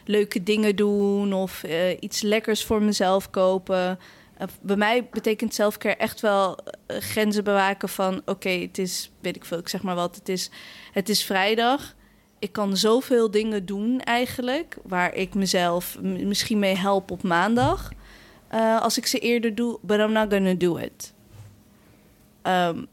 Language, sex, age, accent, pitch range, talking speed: Dutch, female, 20-39, Dutch, 190-230 Hz, 170 wpm